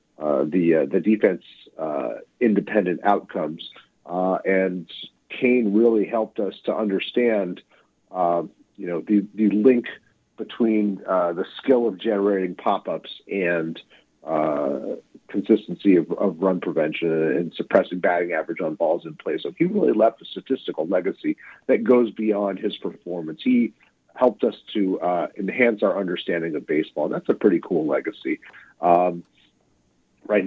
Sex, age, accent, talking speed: male, 40-59, American, 145 wpm